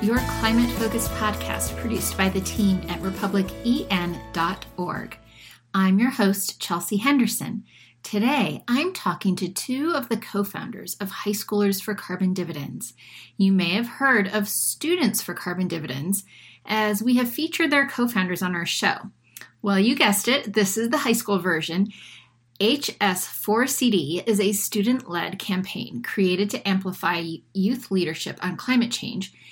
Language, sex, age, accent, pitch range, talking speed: English, female, 40-59, American, 175-230 Hz, 140 wpm